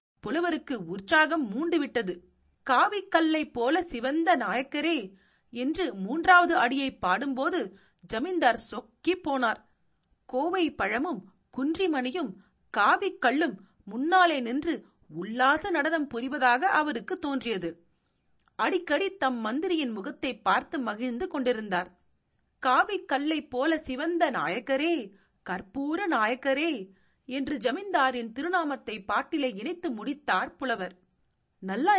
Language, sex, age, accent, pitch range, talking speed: Tamil, female, 40-59, native, 225-330 Hz, 90 wpm